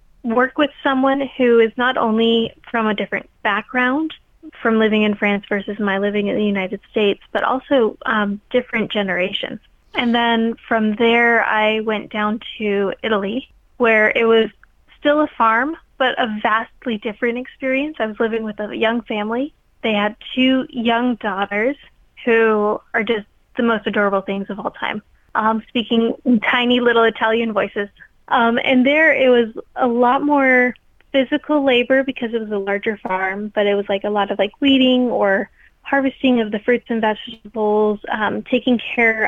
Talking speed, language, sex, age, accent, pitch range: 170 wpm, English, female, 20-39, American, 215-250 Hz